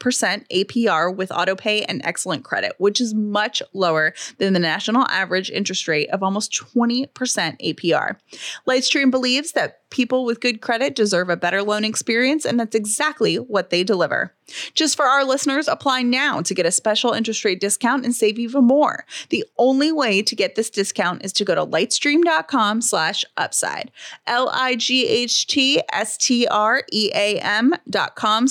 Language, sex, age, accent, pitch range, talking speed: English, female, 30-49, American, 195-265 Hz, 150 wpm